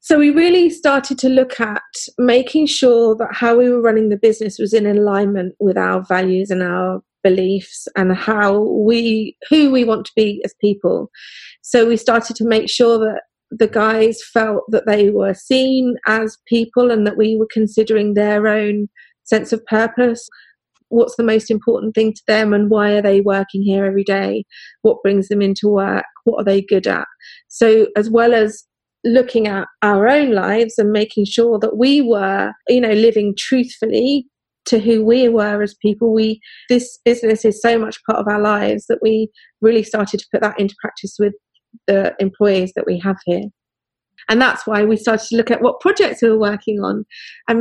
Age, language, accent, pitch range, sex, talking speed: 30-49, English, British, 205-235 Hz, female, 190 wpm